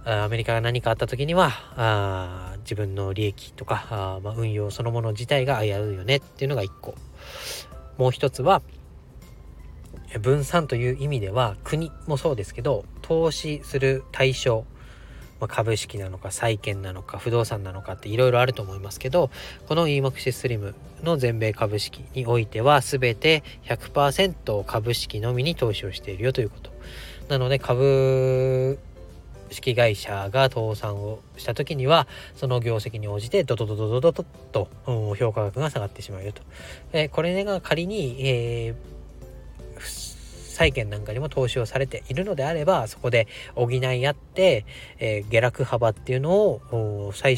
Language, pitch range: Japanese, 105-135 Hz